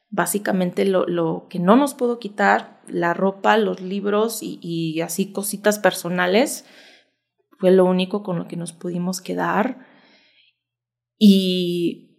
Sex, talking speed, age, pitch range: female, 135 wpm, 20-39, 170-240 Hz